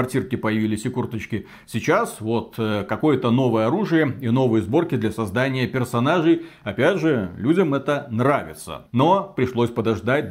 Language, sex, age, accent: Russian, male, 40-59, native